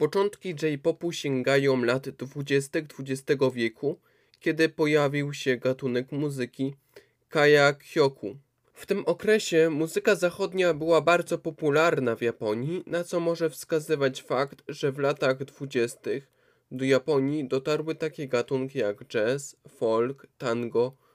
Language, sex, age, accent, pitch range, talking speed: Polish, male, 20-39, native, 135-170 Hz, 120 wpm